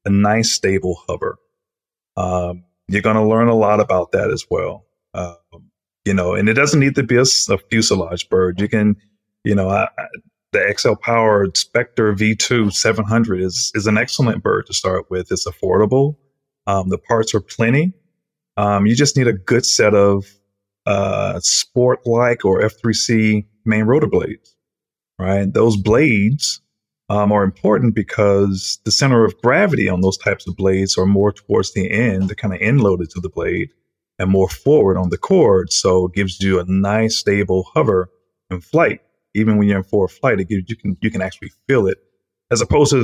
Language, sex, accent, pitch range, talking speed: English, male, American, 95-115 Hz, 180 wpm